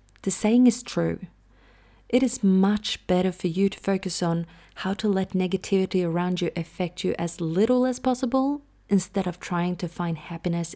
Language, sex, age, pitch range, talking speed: English, female, 30-49, 175-215 Hz, 165 wpm